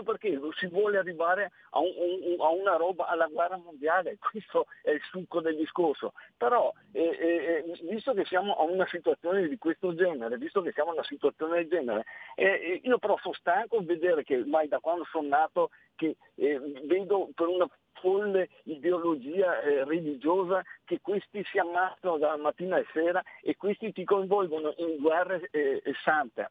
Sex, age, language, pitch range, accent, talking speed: male, 50-69, Italian, 160-230 Hz, native, 170 wpm